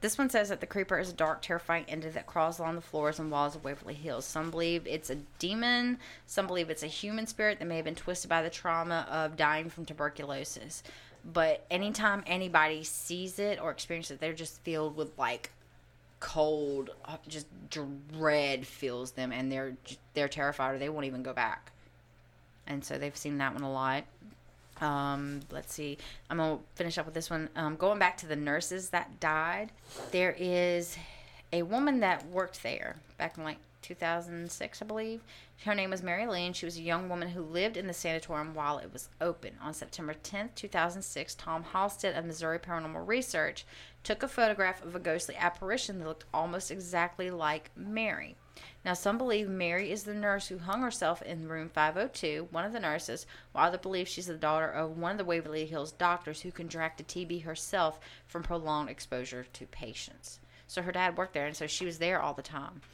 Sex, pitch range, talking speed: female, 150-180 Hz, 195 wpm